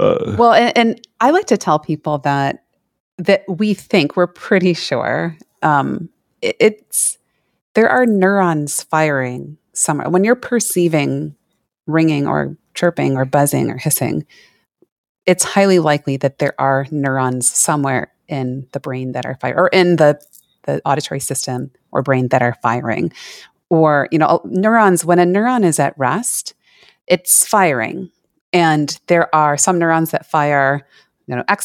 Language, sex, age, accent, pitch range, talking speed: English, female, 30-49, American, 145-195 Hz, 150 wpm